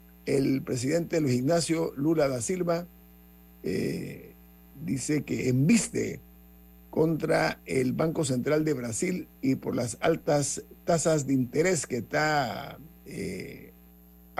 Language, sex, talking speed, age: Spanish, male, 115 wpm, 50-69